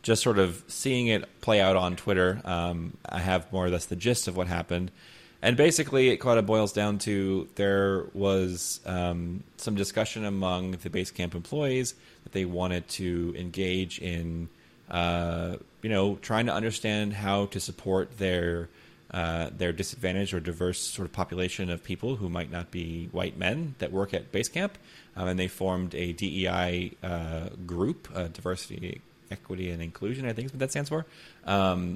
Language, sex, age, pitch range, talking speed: English, male, 30-49, 90-110 Hz, 180 wpm